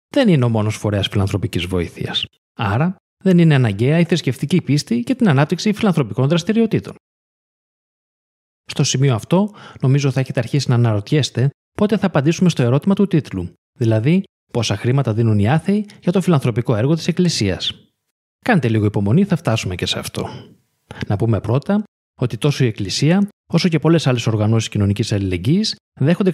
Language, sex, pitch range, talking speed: Greek, male, 115-180 Hz, 160 wpm